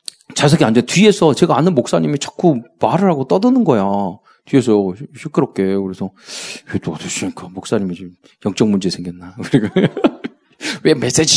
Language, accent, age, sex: Korean, native, 40-59, male